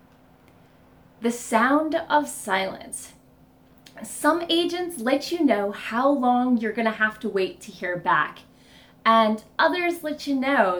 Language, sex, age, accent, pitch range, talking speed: English, female, 20-39, American, 210-315 Hz, 140 wpm